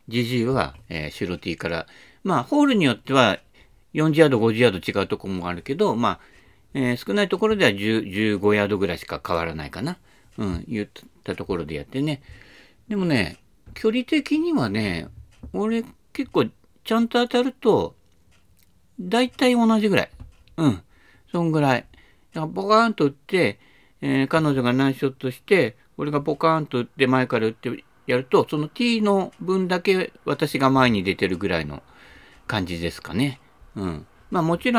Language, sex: Japanese, male